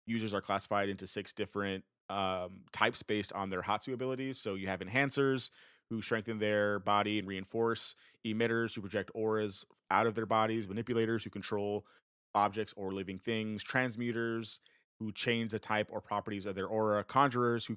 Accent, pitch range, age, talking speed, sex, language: American, 100-115 Hz, 30-49, 170 wpm, male, English